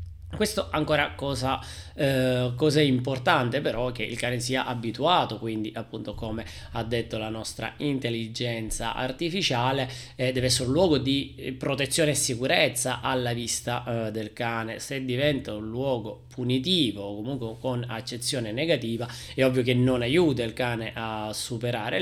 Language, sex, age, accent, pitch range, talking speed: Italian, male, 20-39, native, 115-135 Hz, 150 wpm